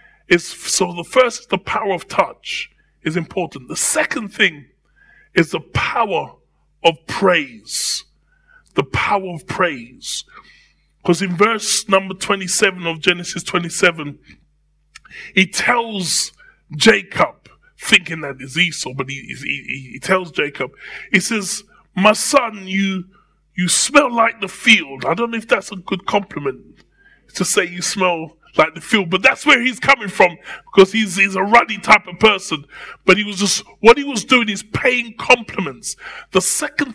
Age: 20-39